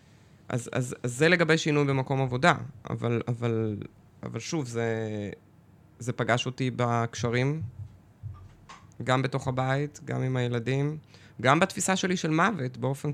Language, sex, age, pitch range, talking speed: Hebrew, male, 20-39, 120-150 Hz, 135 wpm